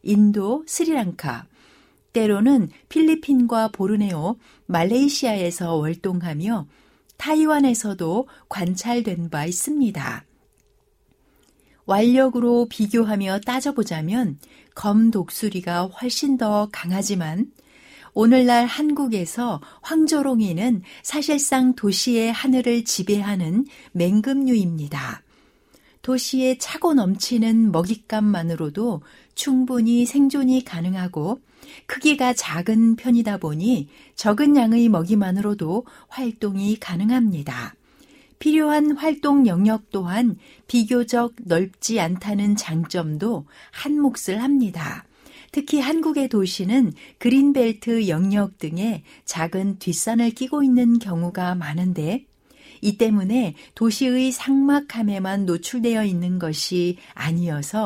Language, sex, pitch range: Korean, female, 185-255 Hz